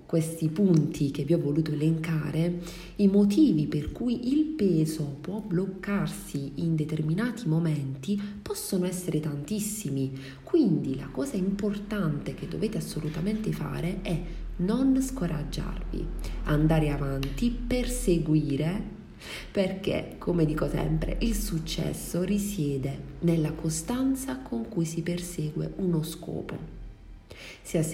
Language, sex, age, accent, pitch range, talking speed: Italian, female, 40-59, native, 155-195 Hz, 110 wpm